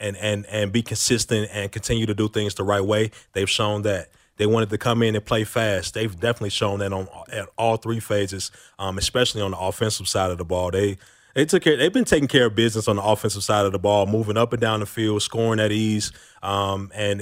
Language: English